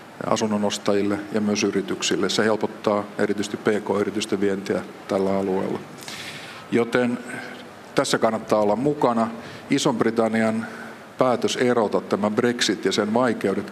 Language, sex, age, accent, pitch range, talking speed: Finnish, male, 50-69, native, 105-120 Hz, 110 wpm